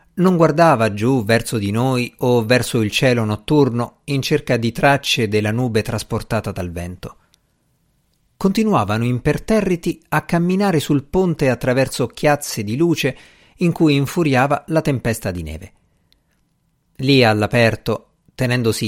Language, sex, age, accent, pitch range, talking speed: Italian, male, 50-69, native, 115-160 Hz, 125 wpm